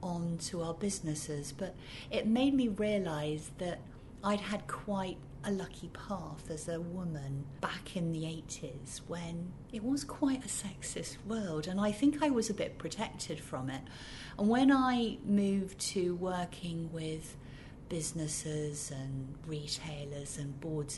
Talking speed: 150 wpm